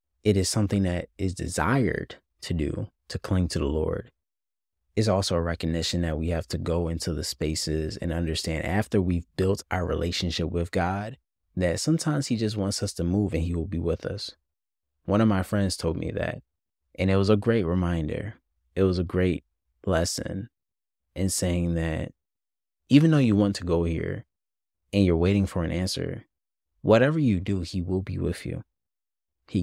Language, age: English, 20-39